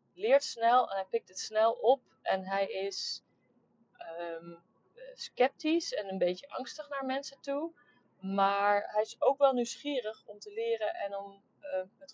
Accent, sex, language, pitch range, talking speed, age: Dutch, female, Dutch, 195-250 Hz, 160 wpm, 30-49